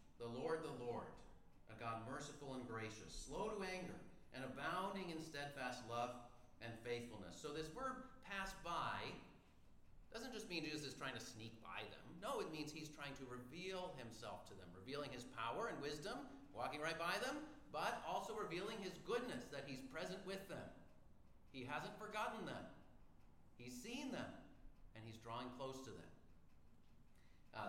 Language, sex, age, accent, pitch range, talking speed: English, male, 40-59, American, 115-155 Hz, 165 wpm